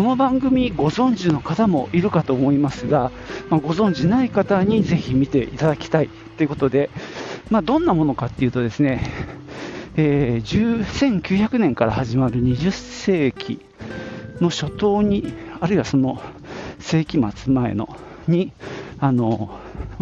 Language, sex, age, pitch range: Japanese, male, 50-69, 120-185 Hz